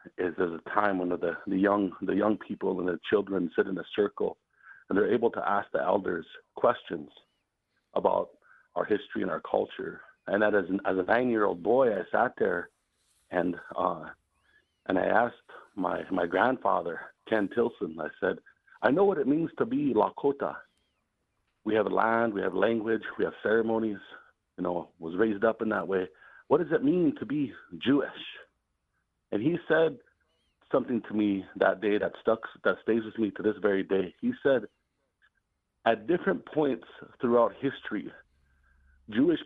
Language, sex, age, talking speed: English, male, 50-69, 170 wpm